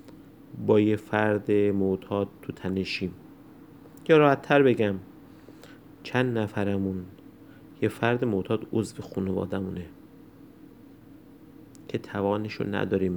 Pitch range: 95-120 Hz